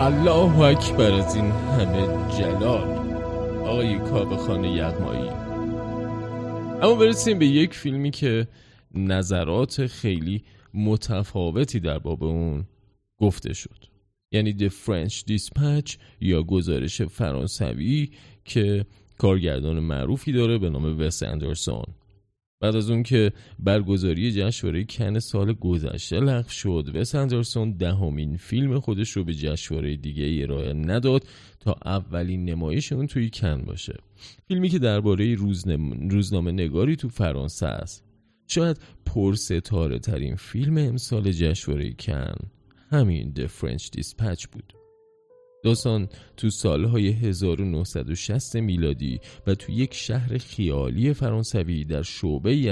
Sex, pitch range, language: male, 85-125 Hz, Persian